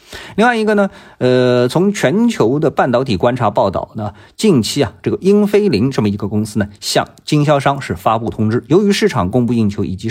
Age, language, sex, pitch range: 50-69, Chinese, male, 105-160 Hz